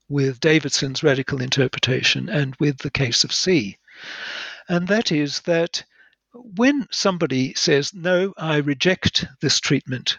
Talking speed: 130 wpm